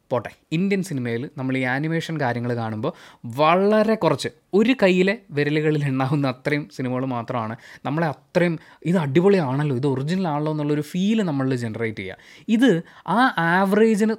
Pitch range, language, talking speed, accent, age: 140-205 Hz, Malayalam, 135 wpm, native, 20-39